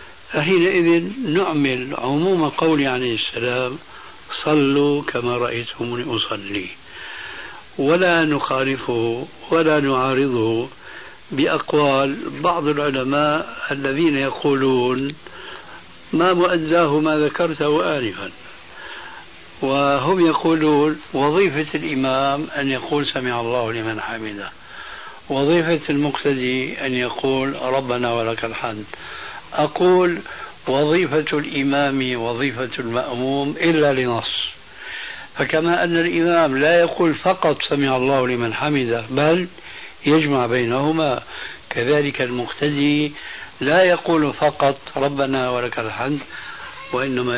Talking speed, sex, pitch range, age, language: 90 wpm, male, 125-155 Hz, 60-79, Arabic